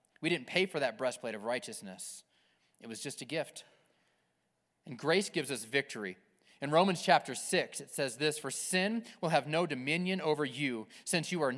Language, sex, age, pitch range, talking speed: English, male, 30-49, 150-195 Hz, 185 wpm